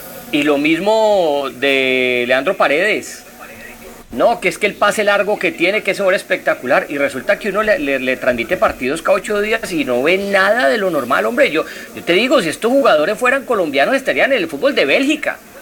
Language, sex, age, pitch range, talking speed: Spanish, male, 40-59, 185-270 Hz, 210 wpm